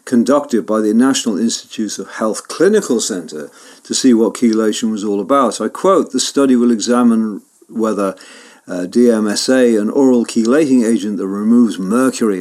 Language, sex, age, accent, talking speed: English, male, 50-69, British, 150 wpm